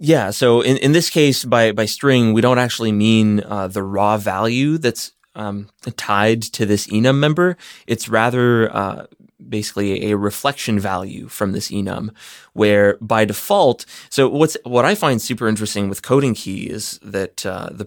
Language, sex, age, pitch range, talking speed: English, male, 20-39, 105-120 Hz, 170 wpm